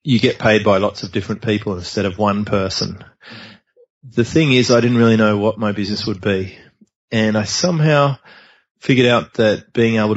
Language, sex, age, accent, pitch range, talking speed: English, male, 30-49, Australian, 105-115 Hz, 190 wpm